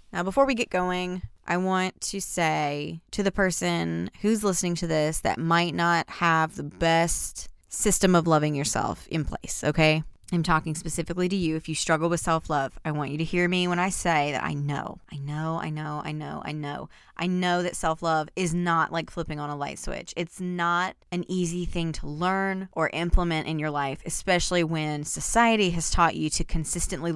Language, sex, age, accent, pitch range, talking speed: English, female, 20-39, American, 160-210 Hz, 200 wpm